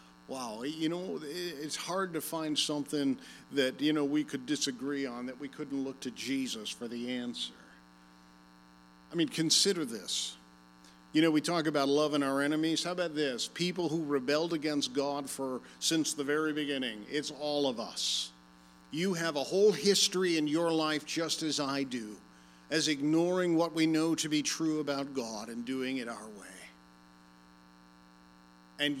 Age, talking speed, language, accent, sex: 50-69, 170 wpm, English, American, male